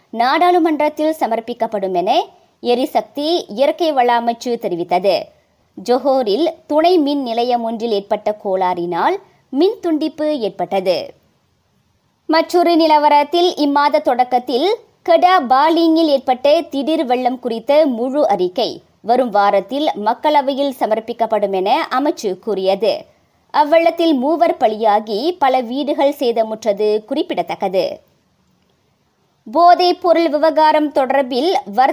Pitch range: 220-330 Hz